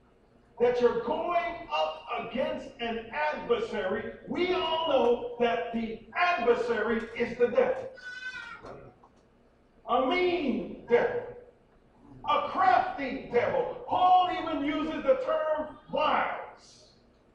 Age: 50-69